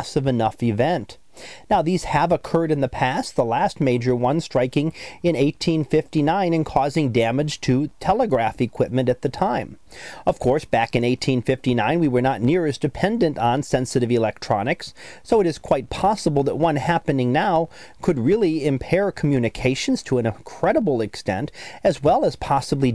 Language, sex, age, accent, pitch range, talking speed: English, male, 40-59, American, 125-160 Hz, 160 wpm